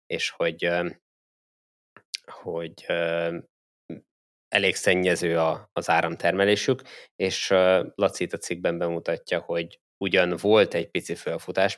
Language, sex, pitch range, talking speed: Hungarian, male, 80-90 Hz, 90 wpm